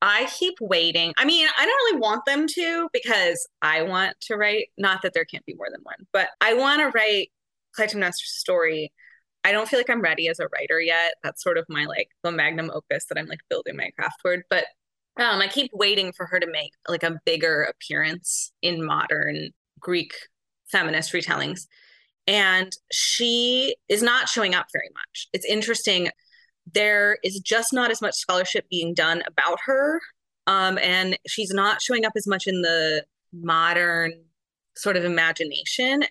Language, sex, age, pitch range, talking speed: English, female, 20-39, 170-240 Hz, 180 wpm